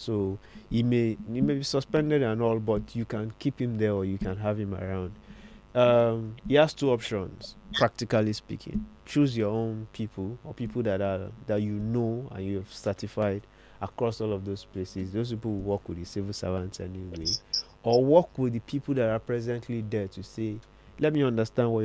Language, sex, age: English, male, 20-39